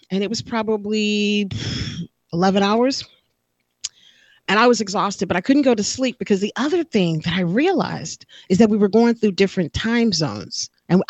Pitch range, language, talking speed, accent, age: 175-215 Hz, English, 180 wpm, American, 40-59